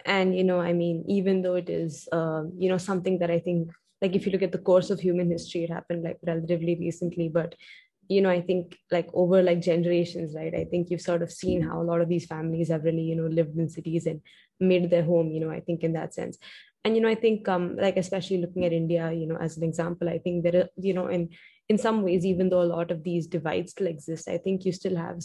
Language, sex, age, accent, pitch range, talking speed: English, female, 20-39, Indian, 170-185 Hz, 260 wpm